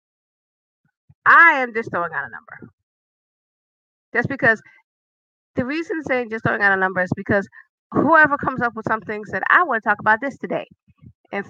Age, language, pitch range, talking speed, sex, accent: 30-49, English, 175-230 Hz, 170 wpm, female, American